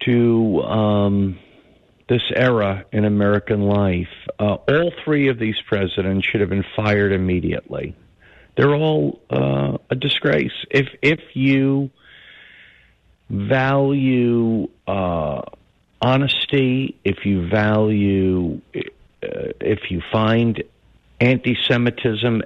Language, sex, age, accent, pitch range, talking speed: English, male, 50-69, American, 100-125 Hz, 100 wpm